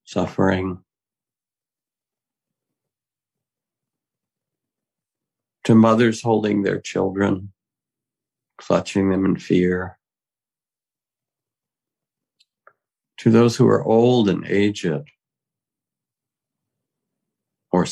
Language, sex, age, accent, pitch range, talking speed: English, male, 60-79, American, 95-120 Hz, 60 wpm